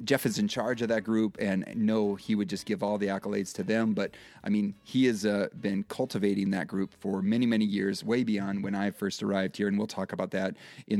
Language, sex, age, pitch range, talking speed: English, male, 30-49, 100-130 Hz, 245 wpm